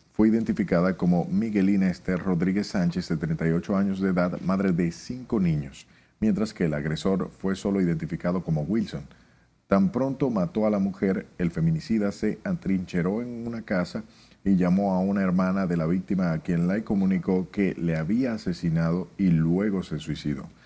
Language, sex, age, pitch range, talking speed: Spanish, male, 40-59, 85-110 Hz, 170 wpm